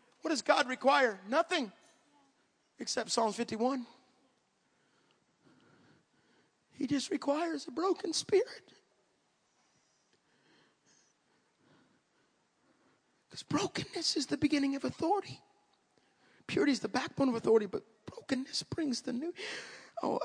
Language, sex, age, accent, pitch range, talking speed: English, male, 40-59, American, 185-280 Hz, 100 wpm